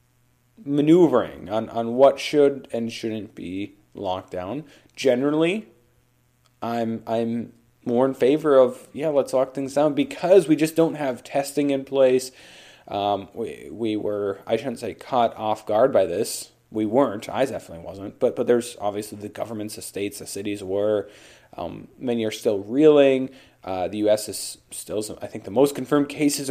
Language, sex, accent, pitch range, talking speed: English, male, American, 110-145 Hz, 170 wpm